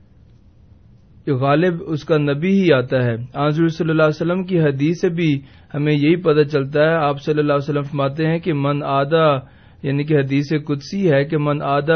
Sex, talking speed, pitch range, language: male, 190 wpm, 145-180 Hz, Urdu